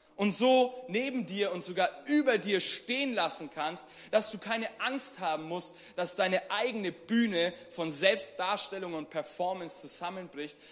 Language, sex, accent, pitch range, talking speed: German, male, German, 170-220 Hz, 145 wpm